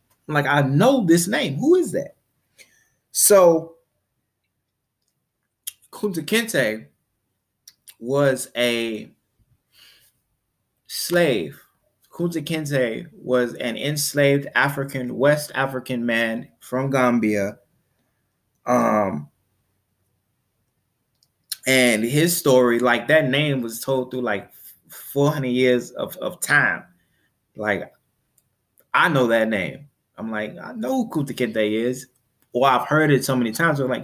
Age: 20-39